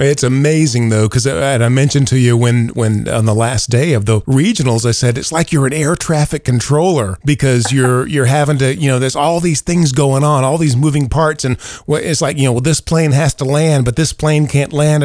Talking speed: 235 wpm